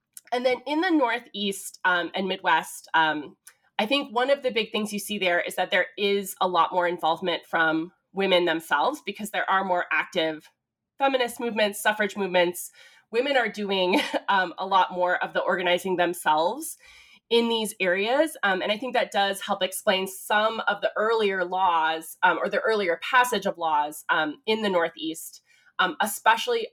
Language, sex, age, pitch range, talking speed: English, female, 20-39, 175-225 Hz, 175 wpm